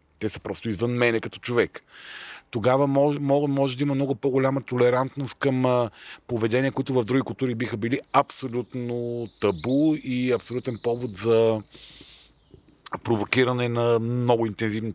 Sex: male